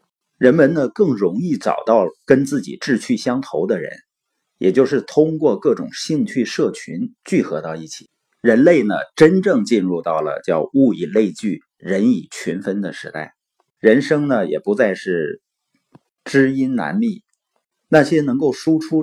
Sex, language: male, Chinese